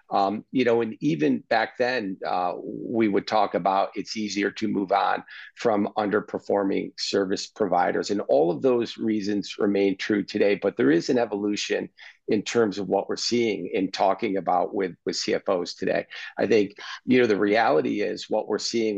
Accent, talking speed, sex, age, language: American, 180 wpm, male, 50-69, English